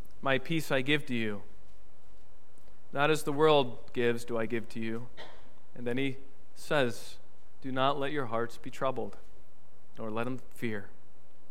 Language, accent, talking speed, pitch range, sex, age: English, American, 160 wpm, 120-150 Hz, male, 40-59